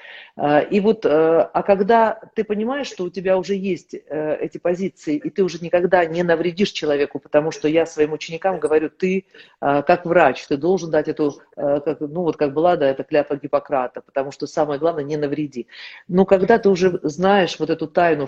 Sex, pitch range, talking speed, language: female, 150-200 Hz, 180 wpm, Russian